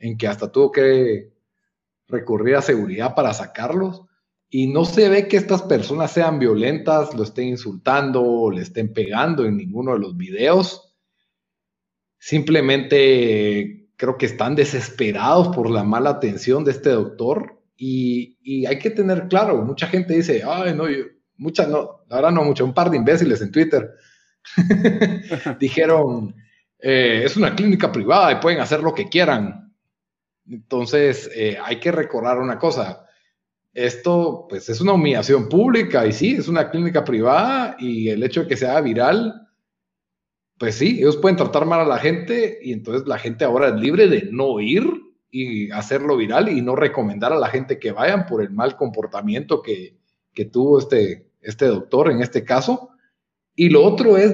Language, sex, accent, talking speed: Spanish, male, Mexican, 165 wpm